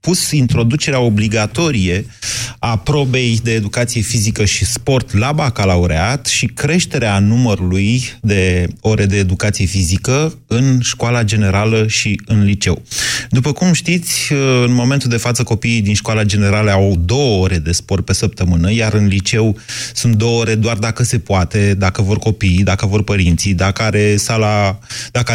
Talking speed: 150 wpm